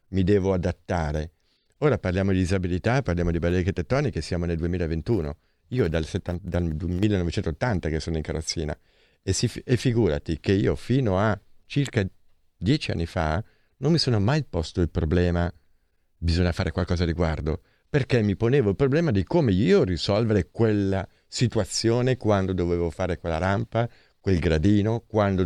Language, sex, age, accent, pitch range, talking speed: Italian, male, 50-69, native, 85-105 Hz, 150 wpm